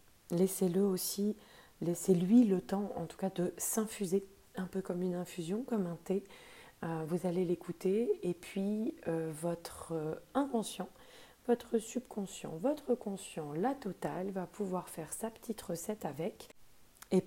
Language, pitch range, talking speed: French, 160-195 Hz, 135 wpm